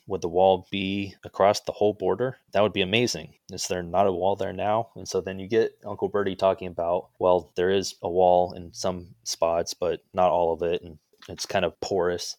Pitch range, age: 85-100 Hz, 20-39